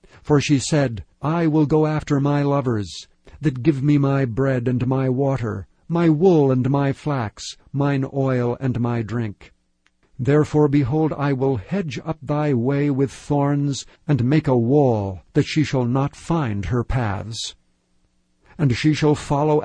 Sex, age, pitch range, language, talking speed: male, 60-79, 120-150 Hz, English, 160 wpm